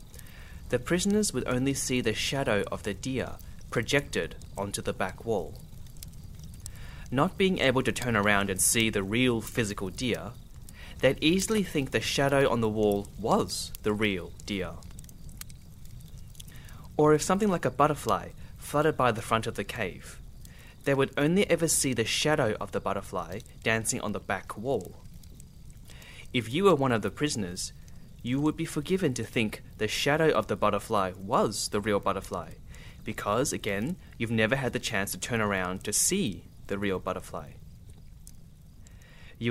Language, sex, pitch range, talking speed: English, male, 100-135 Hz, 160 wpm